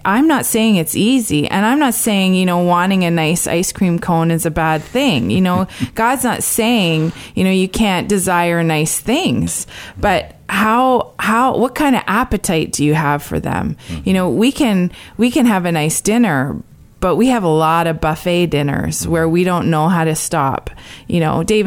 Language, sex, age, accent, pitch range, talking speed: English, female, 20-39, American, 155-195 Hz, 200 wpm